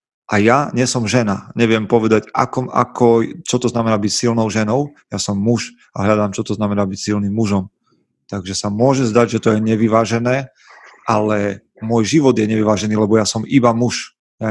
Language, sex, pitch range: Slovak, male, 105-115 Hz